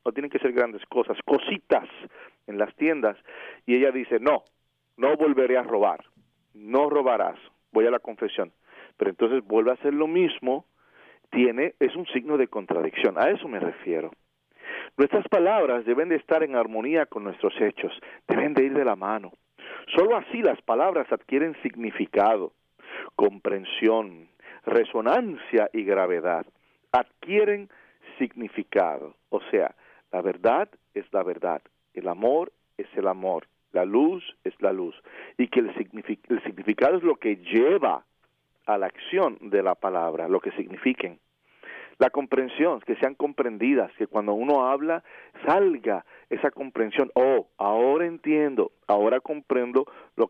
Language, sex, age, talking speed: English, male, 40-59, 145 wpm